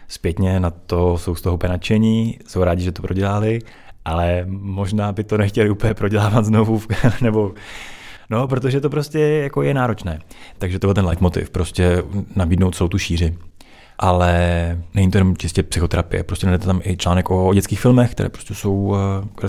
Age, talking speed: 20-39, 175 wpm